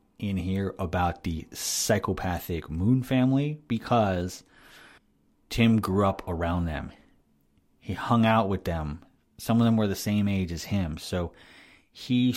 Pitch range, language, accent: 85-110 Hz, English, American